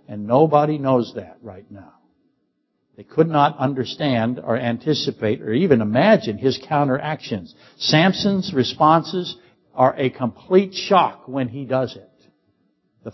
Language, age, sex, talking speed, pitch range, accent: English, 60-79, male, 130 wpm, 105-150 Hz, American